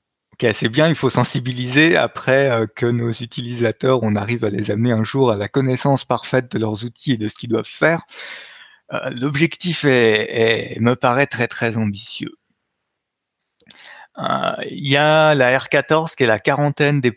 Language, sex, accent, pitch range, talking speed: French, male, French, 115-140 Hz, 165 wpm